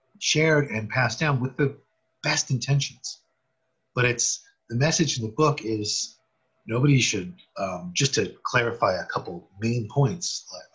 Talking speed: 150 wpm